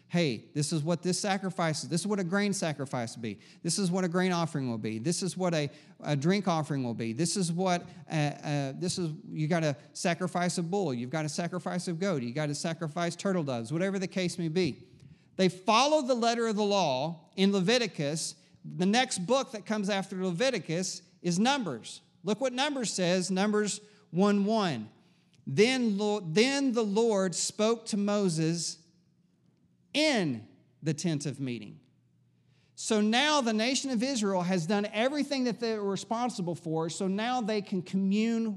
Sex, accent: male, American